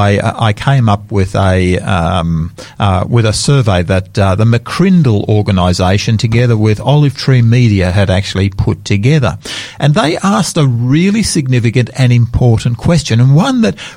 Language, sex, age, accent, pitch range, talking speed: English, male, 50-69, Australian, 120-175 Hz, 155 wpm